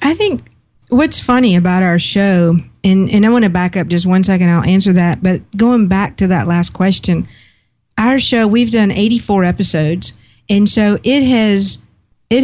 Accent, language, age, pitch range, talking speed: American, English, 50-69, 175-200 Hz, 175 wpm